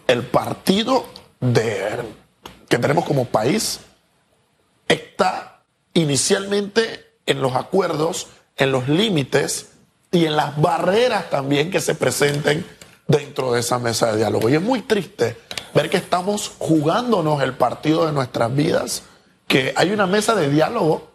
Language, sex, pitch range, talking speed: Spanish, male, 145-190 Hz, 135 wpm